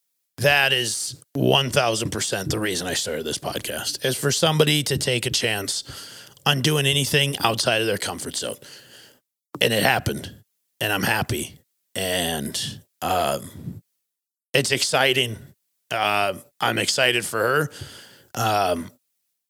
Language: English